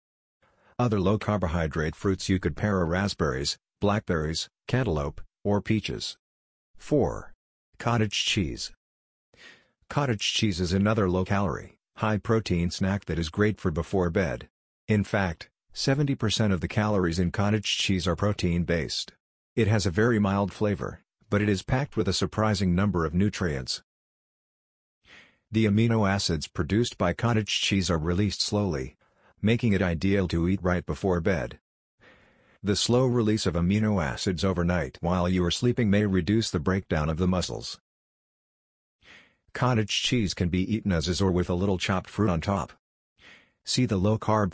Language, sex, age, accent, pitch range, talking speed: English, male, 50-69, American, 90-105 Hz, 150 wpm